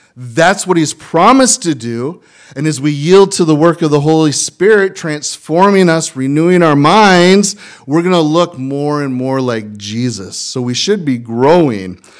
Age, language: 30-49, English